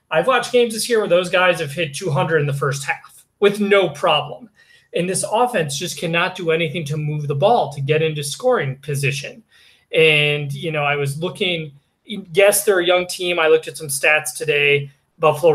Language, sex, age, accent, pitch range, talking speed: English, male, 20-39, American, 140-165 Hz, 200 wpm